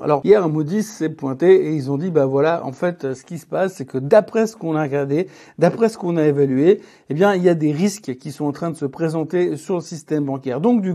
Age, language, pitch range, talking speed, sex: 60-79, French, 150-195 Hz, 275 wpm, male